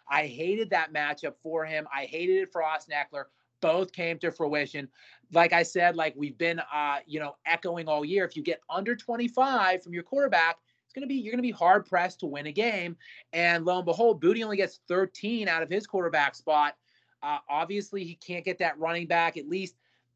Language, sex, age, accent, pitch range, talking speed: English, male, 30-49, American, 150-185 Hz, 210 wpm